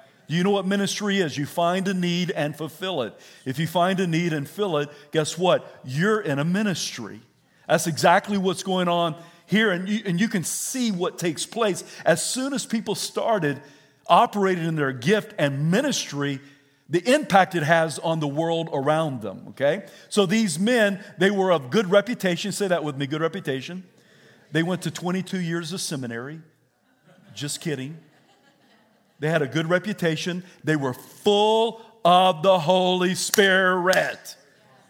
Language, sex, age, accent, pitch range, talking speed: English, male, 50-69, American, 155-205 Hz, 170 wpm